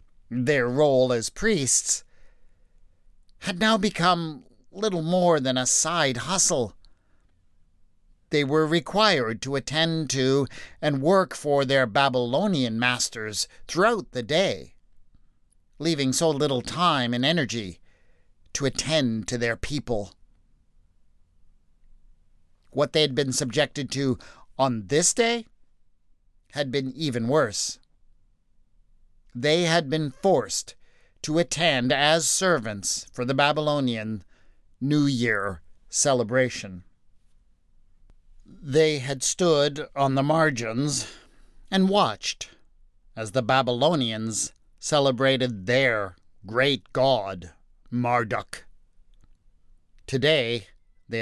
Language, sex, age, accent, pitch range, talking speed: English, male, 50-69, American, 85-145 Hz, 100 wpm